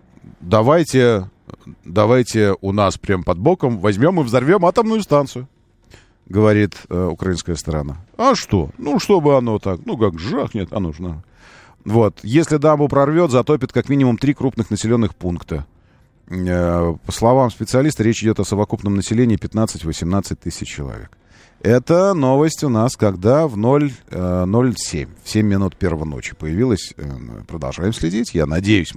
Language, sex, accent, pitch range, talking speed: Russian, male, native, 95-130 Hz, 140 wpm